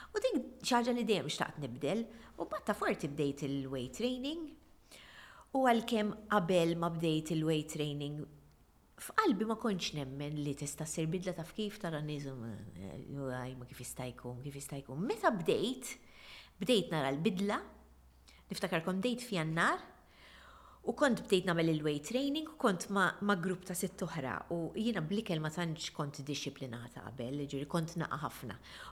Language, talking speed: English, 150 wpm